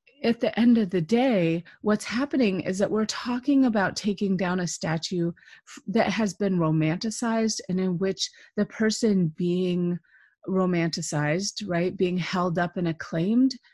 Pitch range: 180-235 Hz